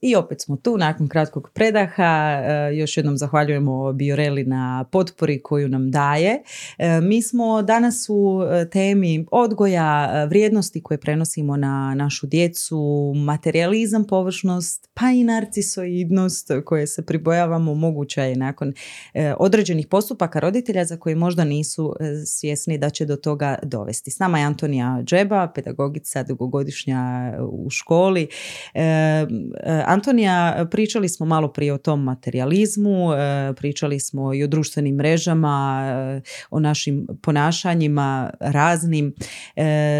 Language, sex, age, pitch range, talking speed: Croatian, female, 30-49, 140-170 Hz, 115 wpm